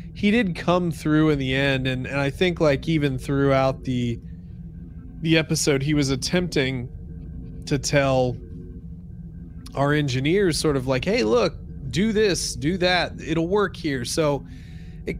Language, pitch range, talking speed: English, 125-165 Hz, 150 wpm